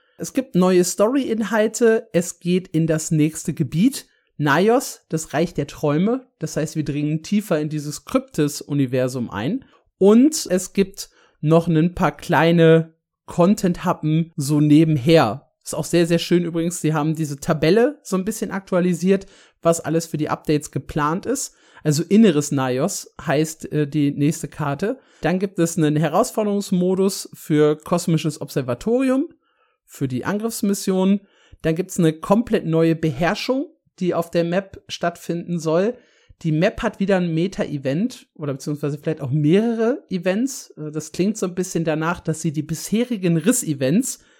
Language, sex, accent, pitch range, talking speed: German, male, German, 155-195 Hz, 150 wpm